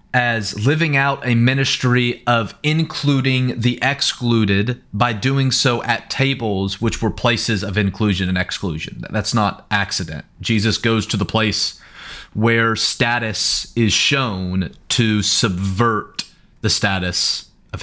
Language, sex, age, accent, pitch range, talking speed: English, male, 30-49, American, 95-115 Hz, 130 wpm